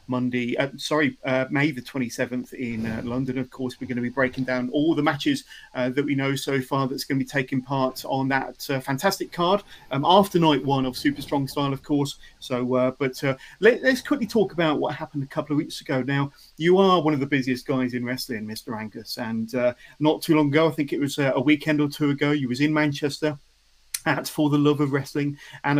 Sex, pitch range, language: male, 130-160 Hz, English